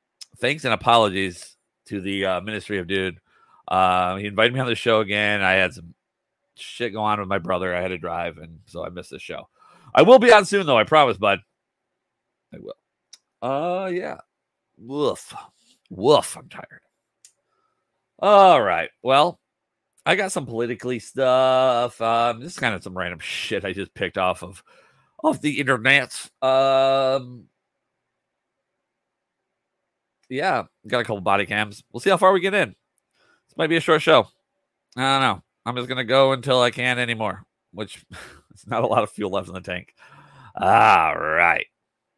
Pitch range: 100-135 Hz